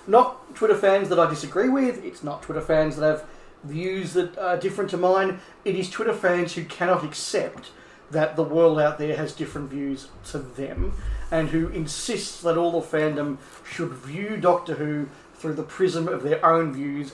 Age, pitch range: 40-59, 155-190 Hz